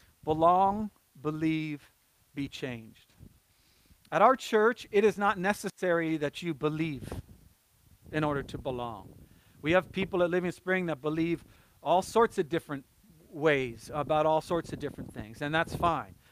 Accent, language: American, English